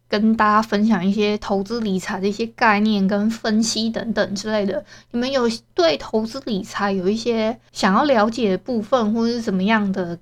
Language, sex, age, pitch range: Chinese, female, 20-39, 205-255 Hz